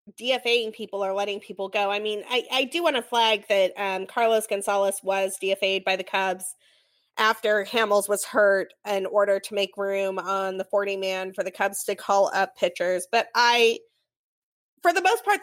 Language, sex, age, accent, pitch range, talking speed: English, female, 20-39, American, 195-245 Hz, 190 wpm